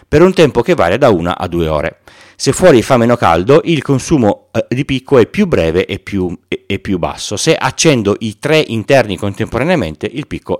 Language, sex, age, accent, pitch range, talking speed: Italian, male, 40-59, native, 95-140 Hz, 190 wpm